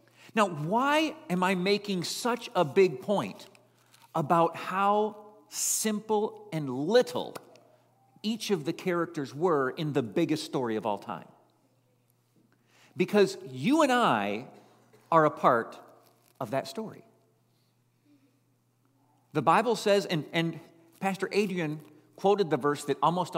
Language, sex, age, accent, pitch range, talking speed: English, male, 50-69, American, 125-200 Hz, 125 wpm